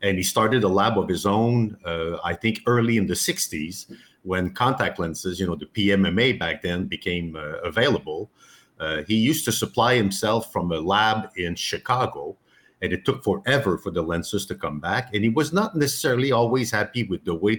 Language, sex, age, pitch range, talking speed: English, male, 50-69, 90-115 Hz, 200 wpm